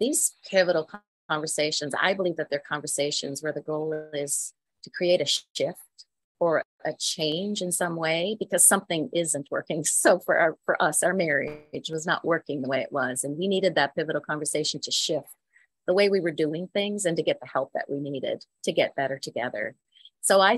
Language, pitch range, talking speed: English, 155-195 Hz, 200 wpm